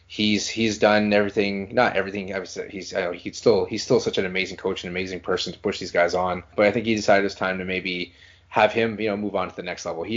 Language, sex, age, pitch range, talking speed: English, male, 20-39, 85-100 Hz, 270 wpm